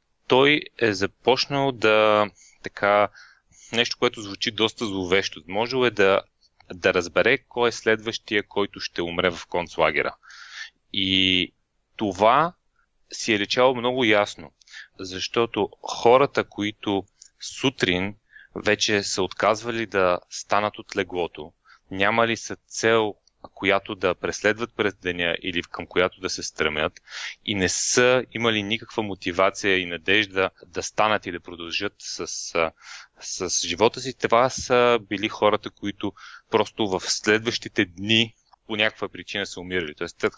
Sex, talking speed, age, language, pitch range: male, 130 wpm, 30-49, Bulgarian, 95-115 Hz